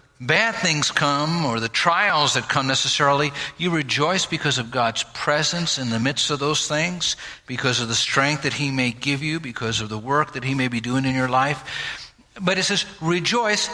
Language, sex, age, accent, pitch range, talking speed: English, male, 60-79, American, 130-170 Hz, 200 wpm